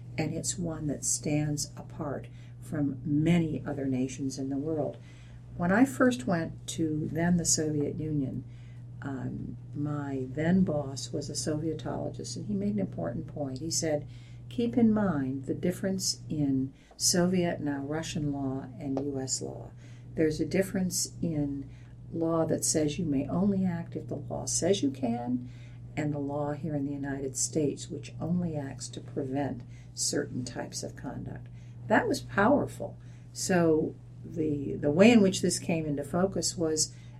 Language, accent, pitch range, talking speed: English, American, 125-160 Hz, 160 wpm